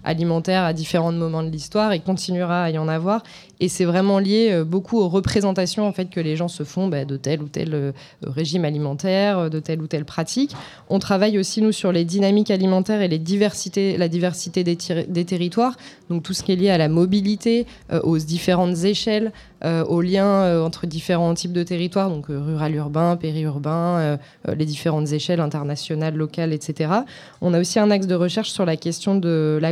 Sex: female